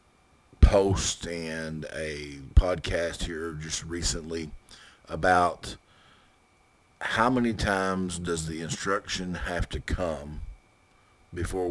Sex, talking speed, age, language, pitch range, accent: male, 85 wpm, 50-69, English, 80-95 Hz, American